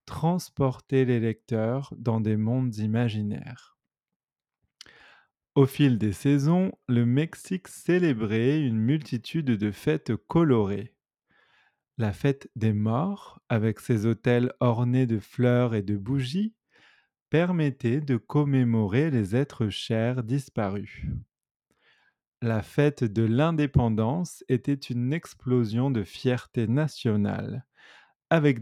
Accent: French